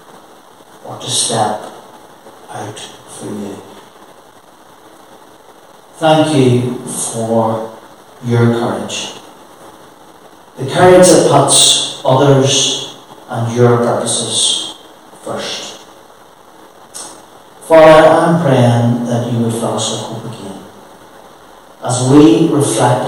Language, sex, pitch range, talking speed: English, male, 110-140 Hz, 85 wpm